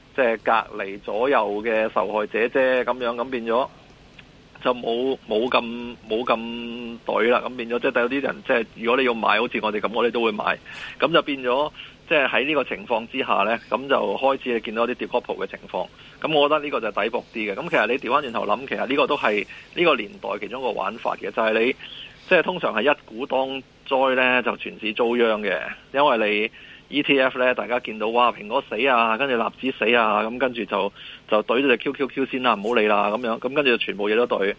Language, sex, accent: Chinese, male, native